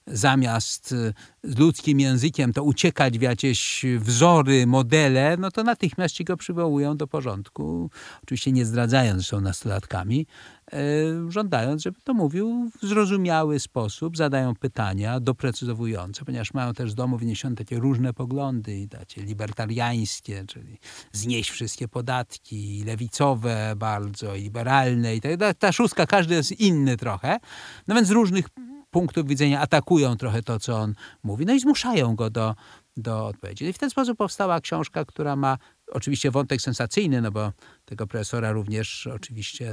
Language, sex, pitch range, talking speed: Polish, male, 110-165 Hz, 145 wpm